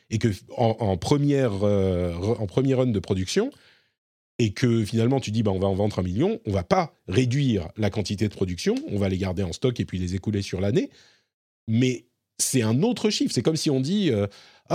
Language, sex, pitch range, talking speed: French, male, 105-145 Hz, 225 wpm